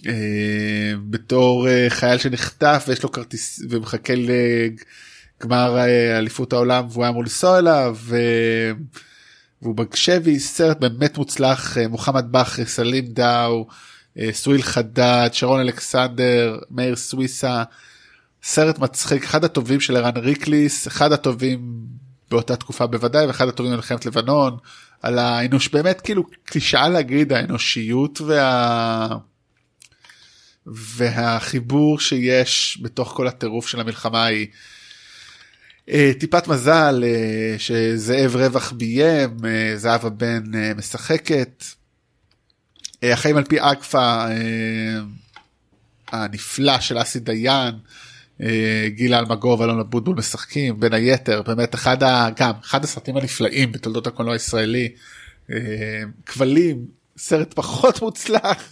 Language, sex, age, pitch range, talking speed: Hebrew, male, 20-39, 115-135 Hz, 105 wpm